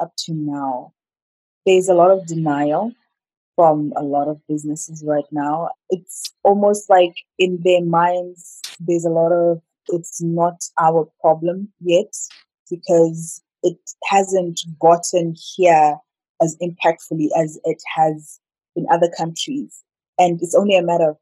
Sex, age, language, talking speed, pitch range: female, 20-39, English, 140 wpm, 165-190 Hz